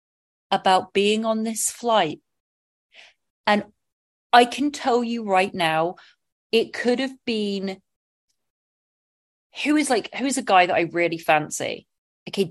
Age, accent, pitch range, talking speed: 30-49, British, 185-255 Hz, 135 wpm